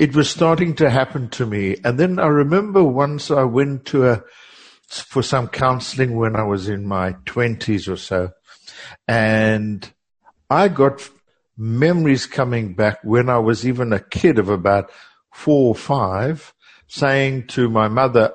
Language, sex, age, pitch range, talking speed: English, male, 60-79, 115-140 Hz, 155 wpm